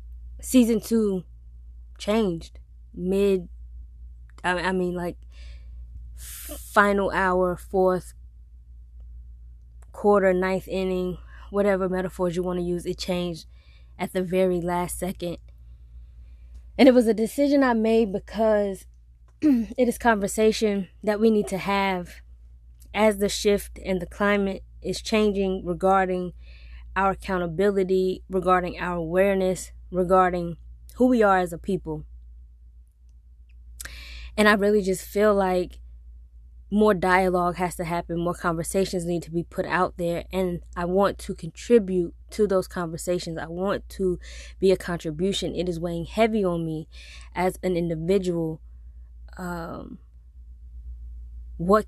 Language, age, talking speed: English, 20-39, 125 wpm